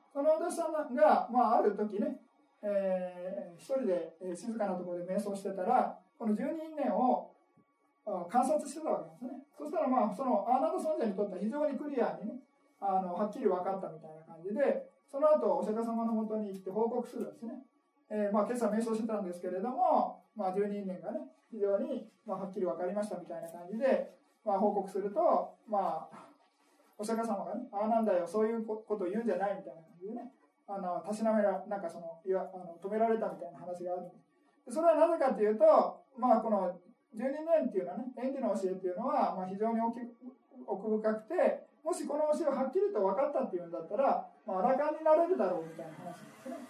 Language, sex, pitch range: Japanese, male, 195-280 Hz